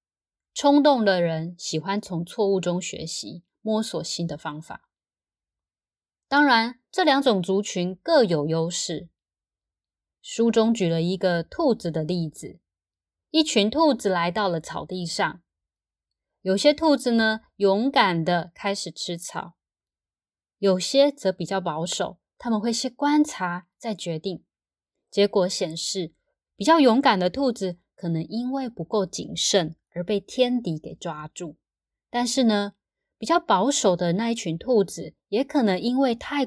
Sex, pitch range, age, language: female, 165-225 Hz, 20-39, Chinese